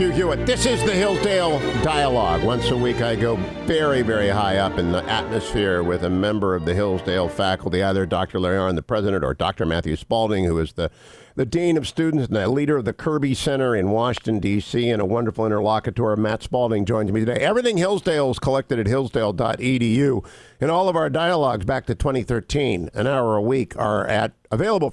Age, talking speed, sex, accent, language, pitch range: 50-69, 195 wpm, male, American, English, 110-150 Hz